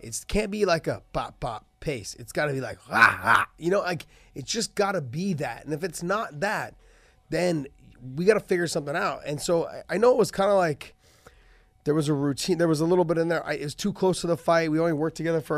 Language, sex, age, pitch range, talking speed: English, male, 30-49, 140-180 Hz, 275 wpm